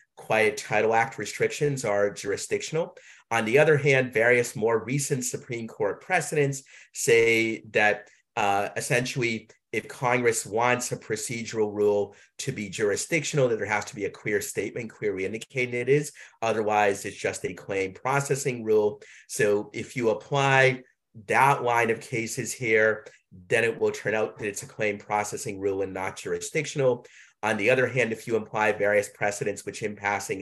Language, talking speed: English, 165 wpm